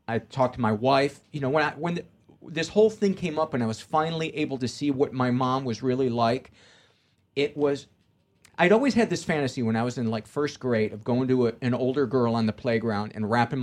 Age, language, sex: 40-59, English, male